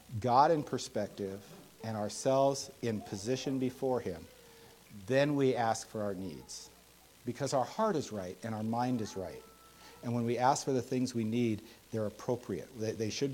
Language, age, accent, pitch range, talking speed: English, 50-69, American, 105-130 Hz, 170 wpm